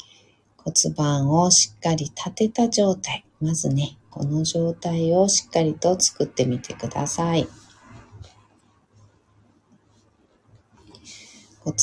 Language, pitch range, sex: Japanese, 115-180 Hz, female